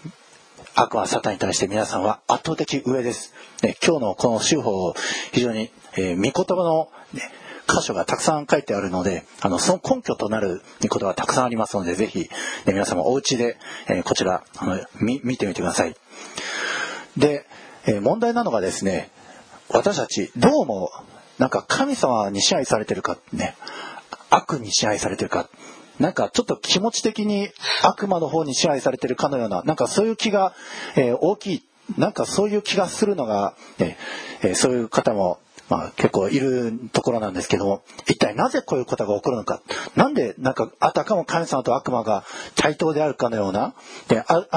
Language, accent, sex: Japanese, native, male